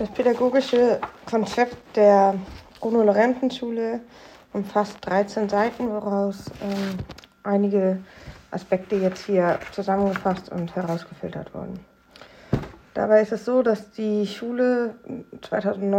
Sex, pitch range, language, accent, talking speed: female, 190-215 Hz, German, German, 100 wpm